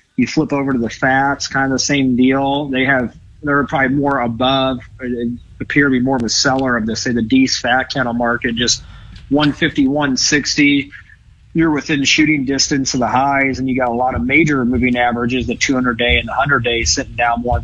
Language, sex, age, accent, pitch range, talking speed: English, male, 30-49, American, 120-145 Hz, 210 wpm